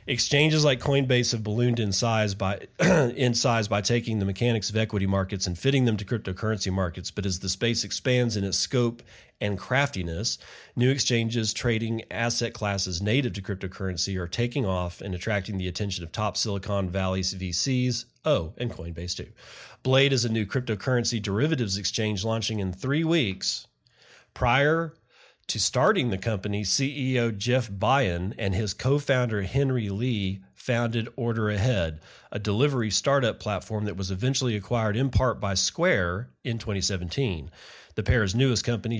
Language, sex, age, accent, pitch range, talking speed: English, male, 40-59, American, 100-125 Hz, 160 wpm